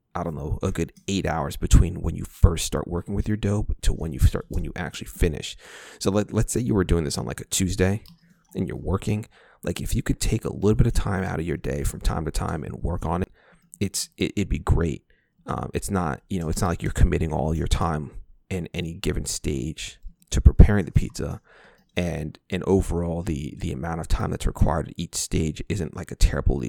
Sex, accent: male, American